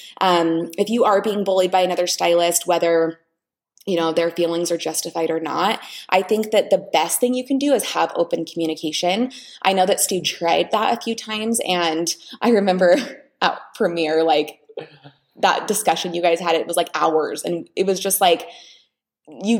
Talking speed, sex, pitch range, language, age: 185 wpm, female, 170-210 Hz, English, 20-39